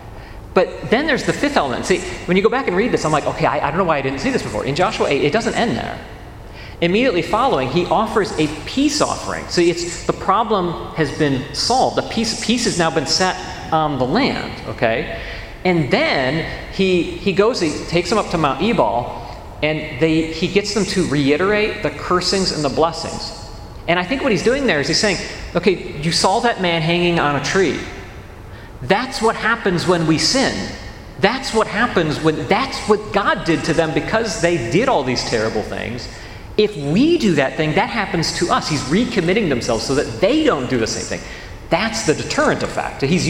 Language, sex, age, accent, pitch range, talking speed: English, male, 40-59, American, 130-195 Hz, 205 wpm